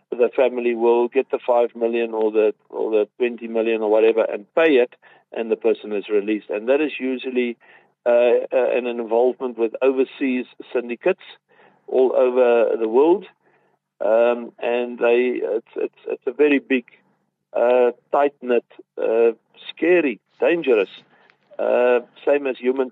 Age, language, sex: 50-69, English, male